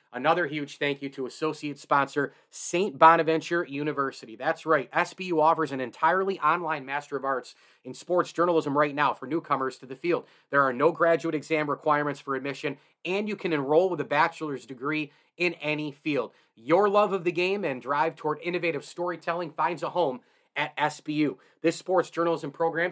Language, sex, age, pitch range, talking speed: English, male, 30-49, 140-170 Hz, 180 wpm